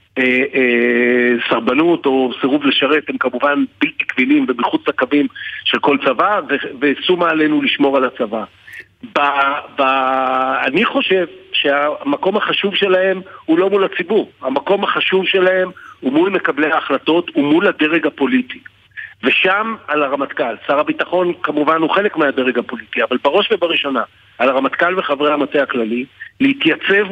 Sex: male